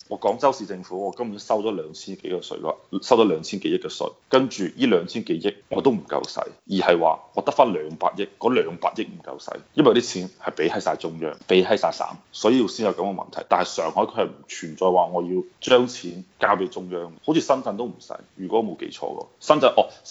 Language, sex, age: Chinese, male, 20-39